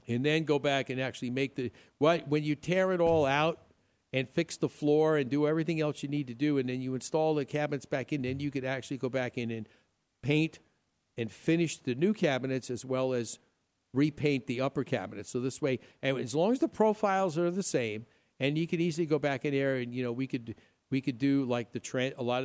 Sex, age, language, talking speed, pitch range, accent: male, 50-69, English, 240 wpm, 120-145 Hz, American